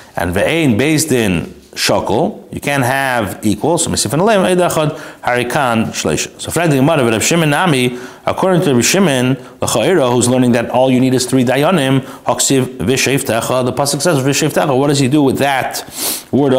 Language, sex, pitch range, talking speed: English, male, 110-145 Hz, 175 wpm